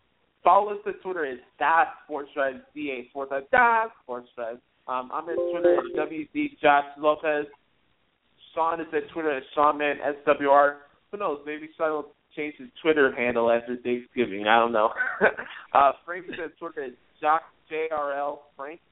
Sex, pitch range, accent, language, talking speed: male, 130-160 Hz, American, English, 180 wpm